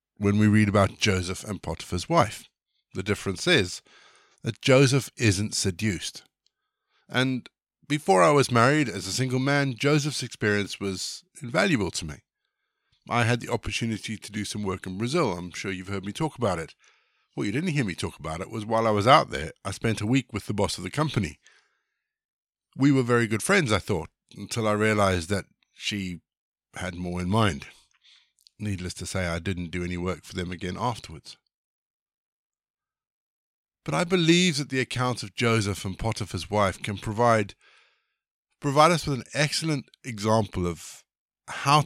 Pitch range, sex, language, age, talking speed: 100-135 Hz, male, English, 50-69, 175 wpm